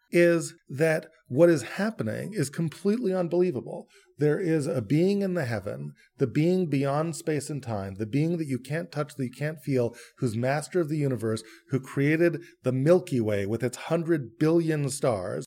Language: English